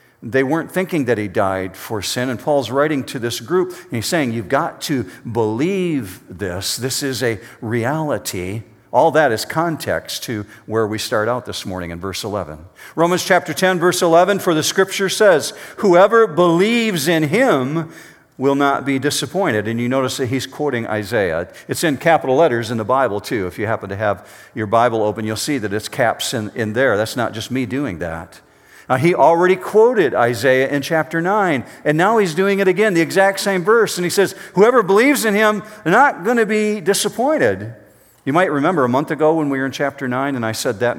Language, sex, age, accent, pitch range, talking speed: English, male, 50-69, American, 120-175 Hz, 205 wpm